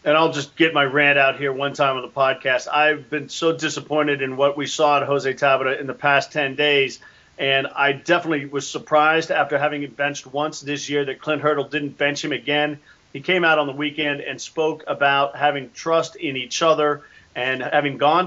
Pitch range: 140-160 Hz